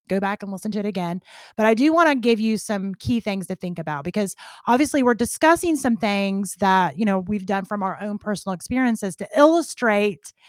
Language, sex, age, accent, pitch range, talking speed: English, female, 30-49, American, 180-235 Hz, 215 wpm